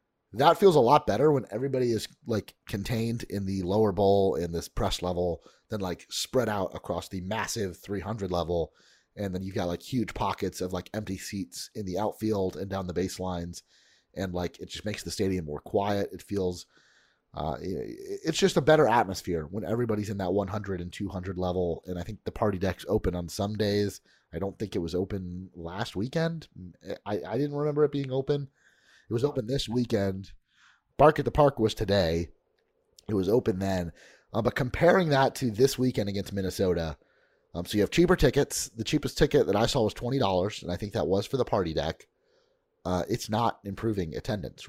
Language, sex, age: English, male, 30-49